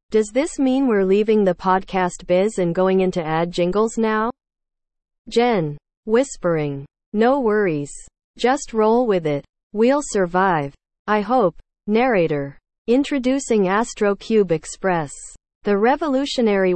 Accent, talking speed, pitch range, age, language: American, 120 wpm, 165-230 Hz, 40-59, English